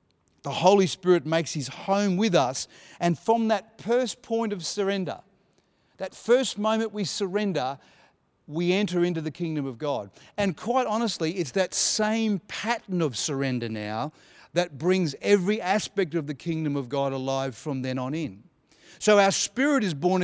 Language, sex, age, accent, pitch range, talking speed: English, male, 40-59, Australian, 145-195 Hz, 165 wpm